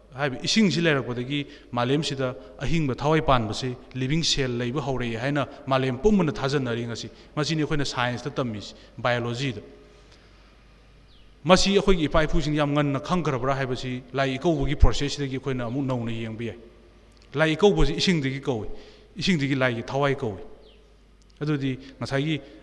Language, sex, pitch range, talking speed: English, male, 120-150 Hz, 35 wpm